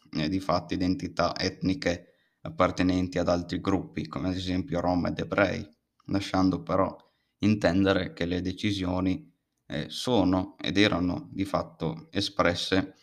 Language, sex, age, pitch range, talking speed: Italian, male, 20-39, 90-95 Hz, 130 wpm